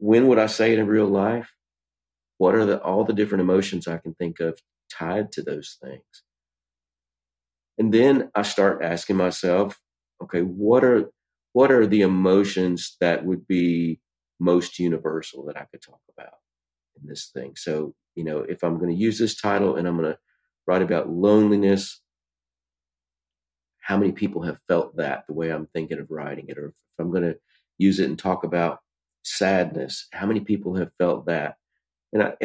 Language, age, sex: English, 40-59, male